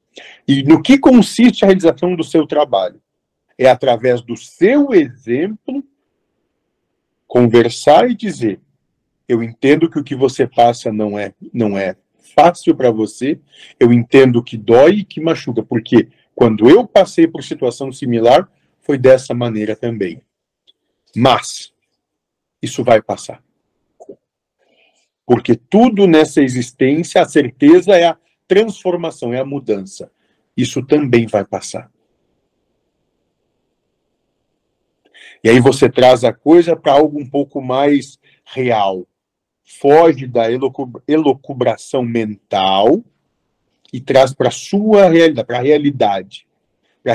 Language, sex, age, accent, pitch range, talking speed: Portuguese, male, 50-69, Brazilian, 120-160 Hz, 120 wpm